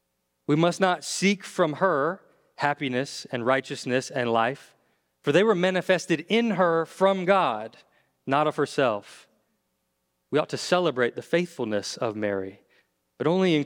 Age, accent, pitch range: 30-49, American, 120-150 Hz